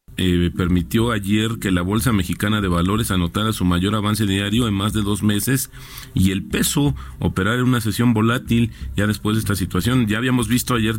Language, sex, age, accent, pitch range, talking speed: Spanish, male, 40-59, Mexican, 95-115 Hz, 195 wpm